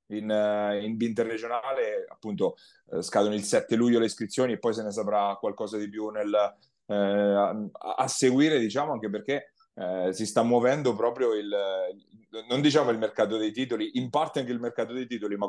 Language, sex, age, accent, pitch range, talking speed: Italian, male, 30-49, native, 110-130 Hz, 175 wpm